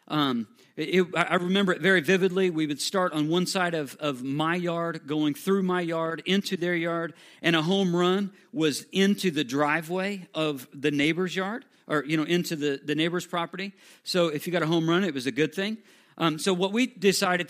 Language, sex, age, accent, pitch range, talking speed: English, male, 50-69, American, 155-195 Hz, 210 wpm